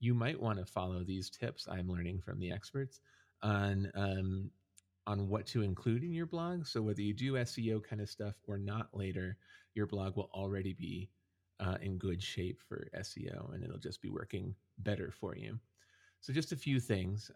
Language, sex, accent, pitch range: English, male, American, 95-115 Hz